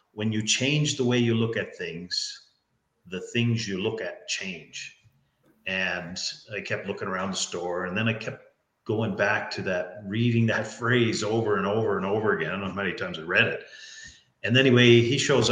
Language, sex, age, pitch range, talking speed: English, male, 40-59, 105-125 Hz, 205 wpm